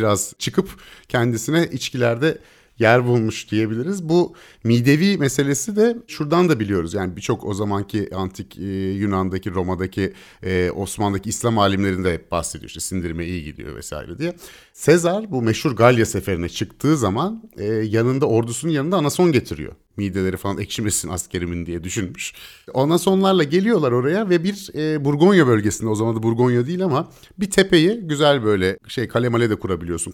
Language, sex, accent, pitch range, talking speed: Turkish, male, native, 100-170 Hz, 145 wpm